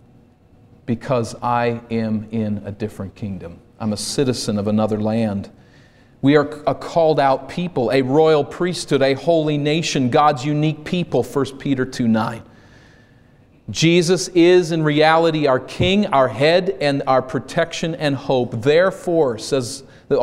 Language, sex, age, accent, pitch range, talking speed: English, male, 40-59, American, 120-170 Hz, 140 wpm